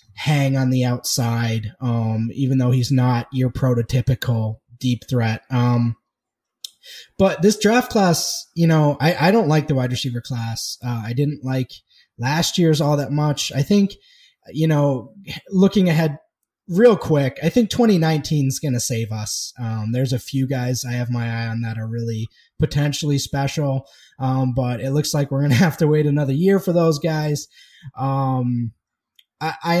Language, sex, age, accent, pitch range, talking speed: English, male, 20-39, American, 125-150 Hz, 175 wpm